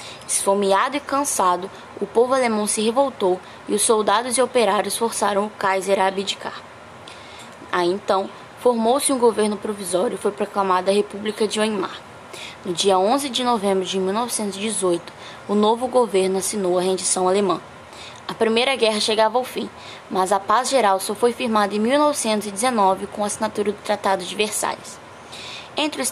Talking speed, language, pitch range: 160 wpm, Portuguese, 190-230 Hz